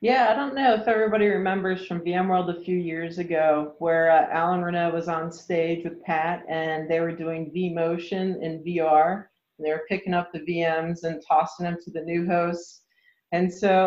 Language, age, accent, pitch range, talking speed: English, 40-59, American, 160-180 Hz, 195 wpm